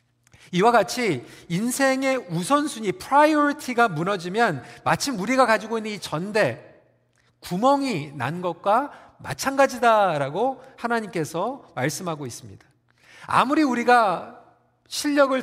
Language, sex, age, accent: Korean, male, 40-59, native